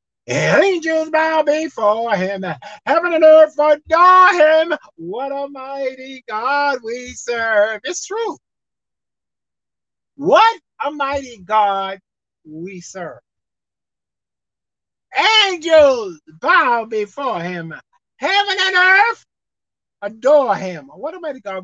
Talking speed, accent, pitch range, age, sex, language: 100 wpm, American, 200-310 Hz, 50-69, male, English